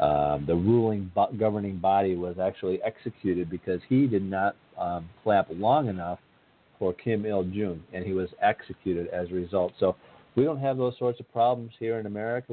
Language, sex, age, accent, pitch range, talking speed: English, male, 50-69, American, 90-115 Hz, 180 wpm